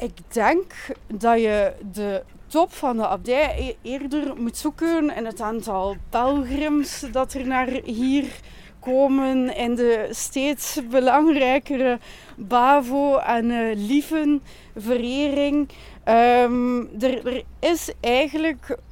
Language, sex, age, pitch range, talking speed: Dutch, female, 20-39, 225-280 Hz, 105 wpm